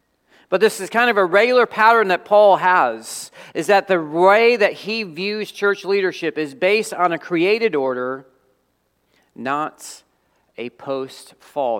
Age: 40-59